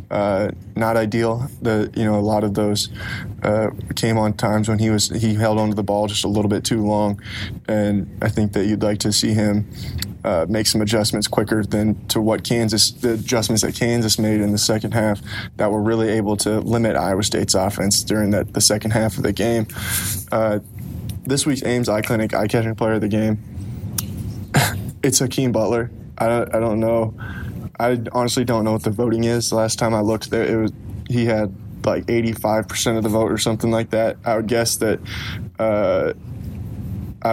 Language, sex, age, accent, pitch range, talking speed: English, male, 20-39, American, 105-115 Hz, 200 wpm